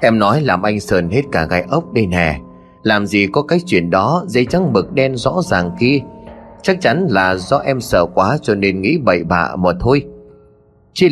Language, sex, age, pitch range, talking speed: Vietnamese, male, 20-39, 95-140 Hz, 210 wpm